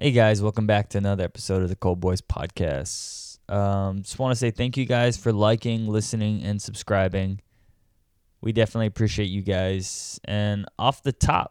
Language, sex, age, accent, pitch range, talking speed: English, male, 20-39, American, 100-120 Hz, 175 wpm